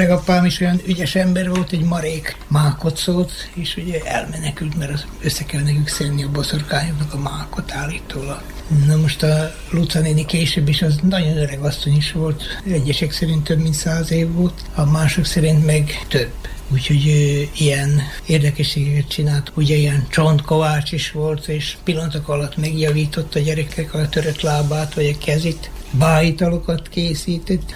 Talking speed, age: 160 wpm, 60-79